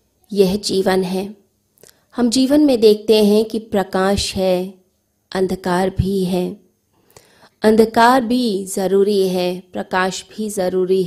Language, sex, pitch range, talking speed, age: Hindi, female, 185-220 Hz, 115 wpm, 20-39